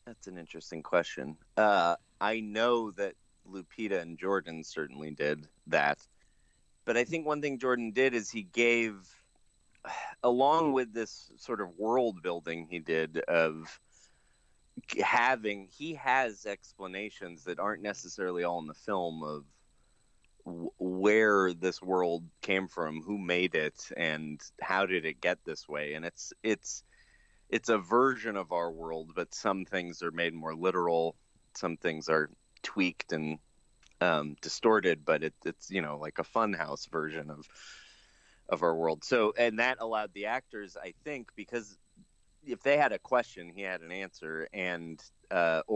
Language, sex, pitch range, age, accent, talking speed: English, male, 80-105 Hz, 30-49, American, 155 wpm